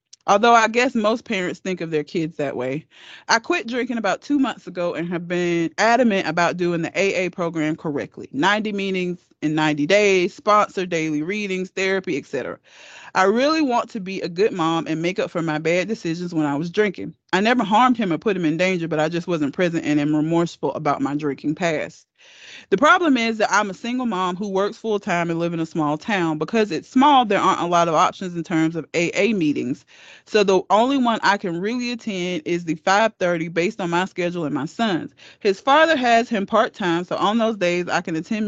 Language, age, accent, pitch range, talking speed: English, 30-49, American, 165-210 Hz, 215 wpm